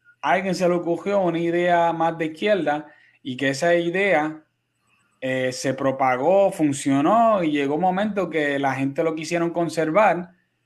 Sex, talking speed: male, 160 wpm